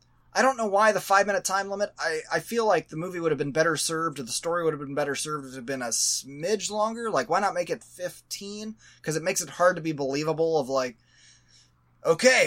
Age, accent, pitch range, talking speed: 20-39, American, 140-195 Hz, 250 wpm